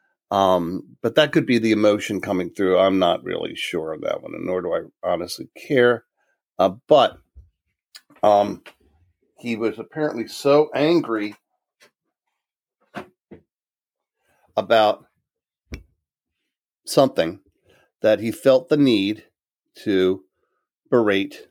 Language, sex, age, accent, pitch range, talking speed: English, male, 40-59, American, 105-135 Hz, 105 wpm